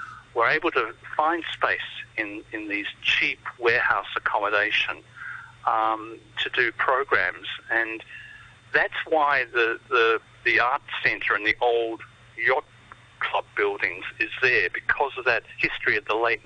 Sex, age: male, 50-69